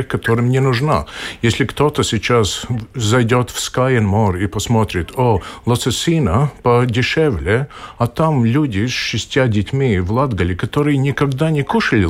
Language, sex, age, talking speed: Russian, male, 50-69, 140 wpm